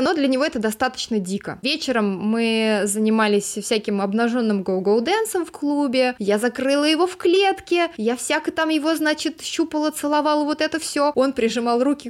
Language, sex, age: Russian, female, 20-39